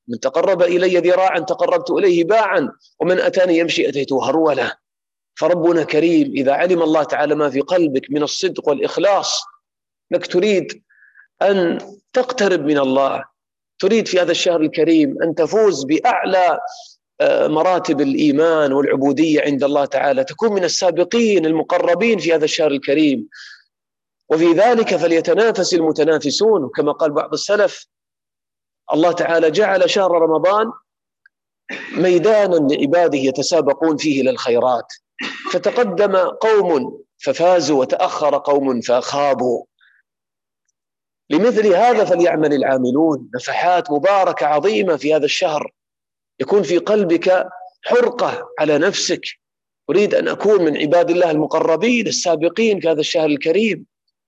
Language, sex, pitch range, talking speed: Arabic, male, 150-210 Hz, 115 wpm